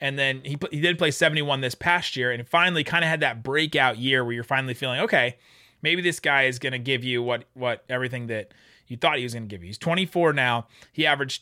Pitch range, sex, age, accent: 125-170 Hz, male, 30-49, American